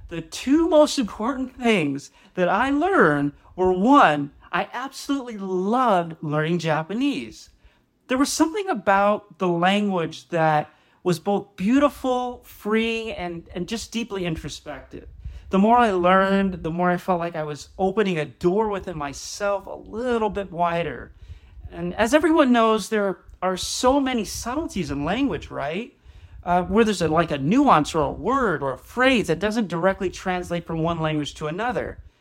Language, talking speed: English, 160 wpm